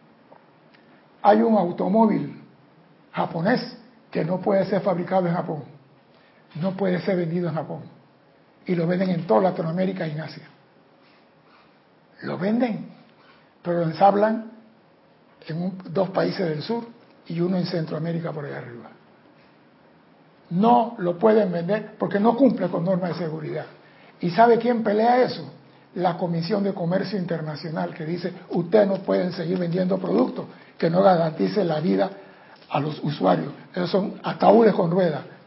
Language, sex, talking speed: Spanish, male, 150 wpm